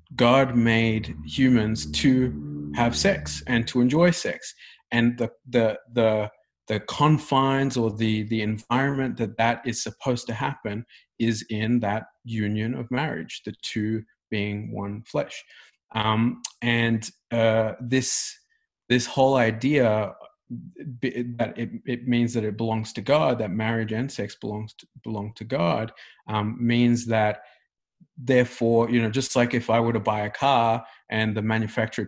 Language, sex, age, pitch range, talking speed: English, male, 30-49, 110-125 Hz, 150 wpm